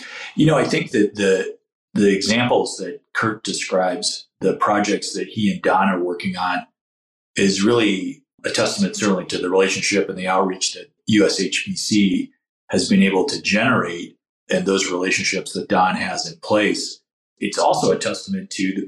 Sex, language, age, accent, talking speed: male, English, 40-59, American, 165 wpm